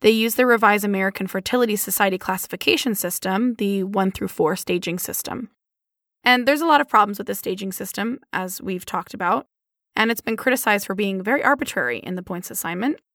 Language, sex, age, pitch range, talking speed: English, female, 20-39, 195-255 Hz, 185 wpm